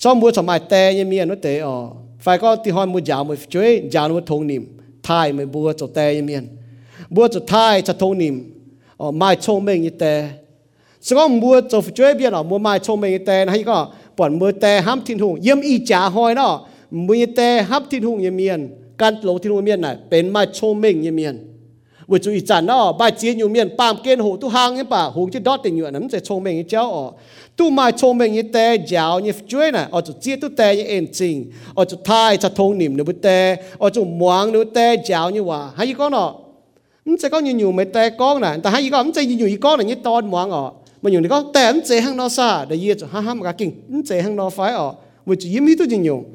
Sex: male